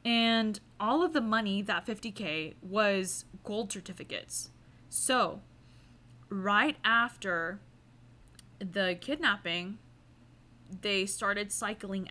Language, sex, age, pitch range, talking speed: English, female, 20-39, 180-230 Hz, 90 wpm